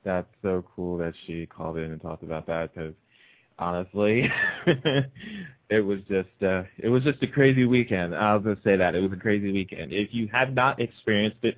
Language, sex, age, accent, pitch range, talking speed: English, male, 20-39, American, 95-120 Hz, 205 wpm